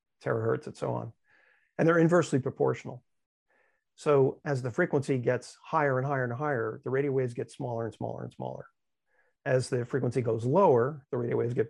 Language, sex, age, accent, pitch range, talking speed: English, male, 50-69, American, 125-145 Hz, 185 wpm